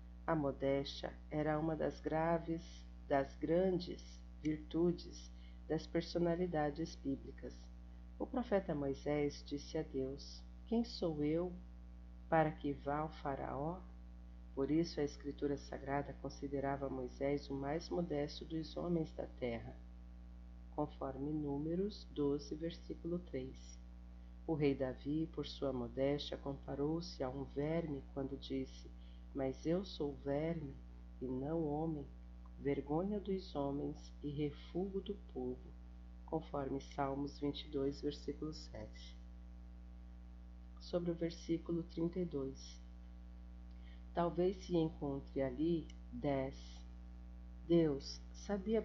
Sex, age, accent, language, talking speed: female, 40-59, Brazilian, Portuguese, 105 wpm